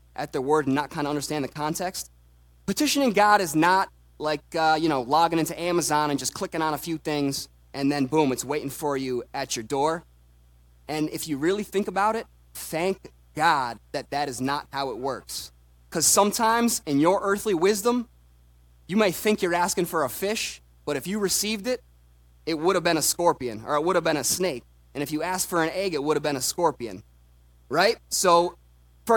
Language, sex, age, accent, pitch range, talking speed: English, male, 20-39, American, 125-185 Hz, 210 wpm